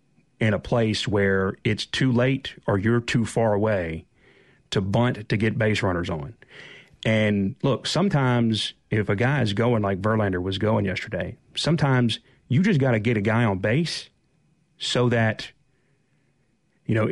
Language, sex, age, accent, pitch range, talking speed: English, male, 40-59, American, 100-125 Hz, 160 wpm